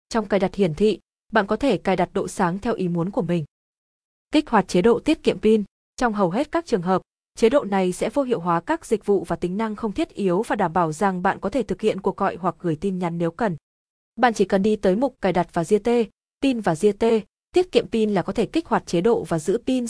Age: 20-39